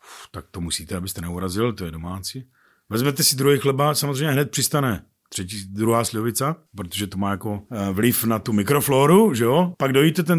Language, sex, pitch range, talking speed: Czech, male, 110-150 Hz, 180 wpm